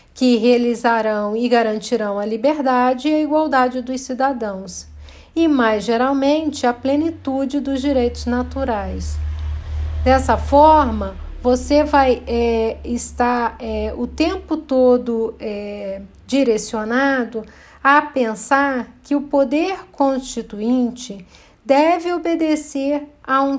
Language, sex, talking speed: Portuguese, female, 95 wpm